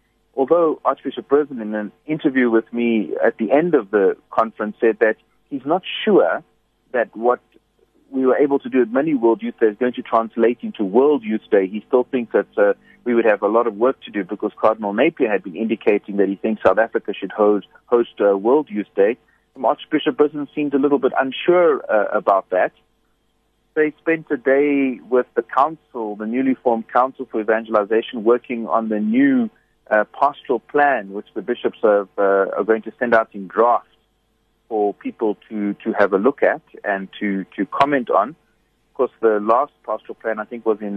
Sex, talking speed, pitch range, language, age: male, 200 wpm, 105-130 Hz, English, 40-59